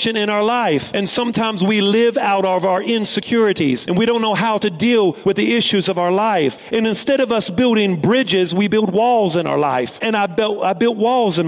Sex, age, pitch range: male, 40-59, 190-225 Hz